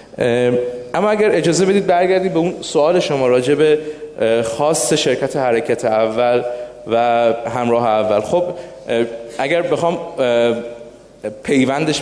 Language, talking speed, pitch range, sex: Persian, 105 wpm, 115-150 Hz, male